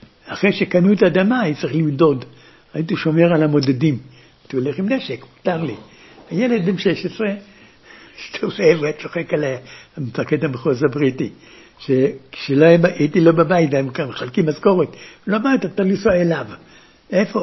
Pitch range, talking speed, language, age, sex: 160-240 Hz, 140 wpm, Hebrew, 60-79, male